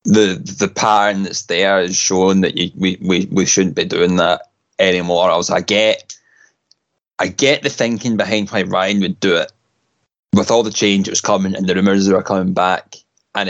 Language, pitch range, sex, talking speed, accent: English, 90-105 Hz, male, 205 wpm, British